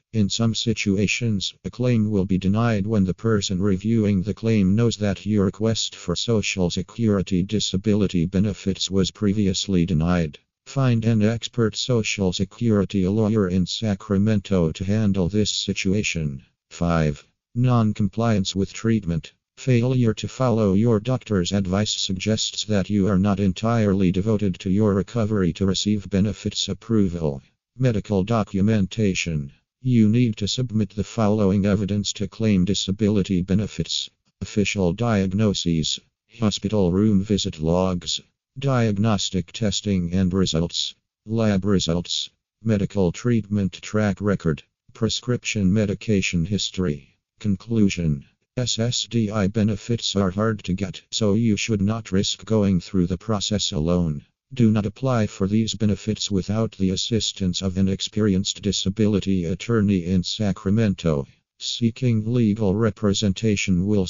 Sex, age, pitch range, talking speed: male, 50-69, 95-110 Hz, 125 wpm